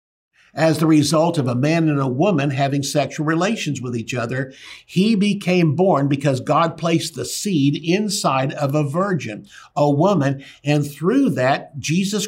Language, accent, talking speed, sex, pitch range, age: English, American, 160 wpm, male, 130-160 Hz, 60-79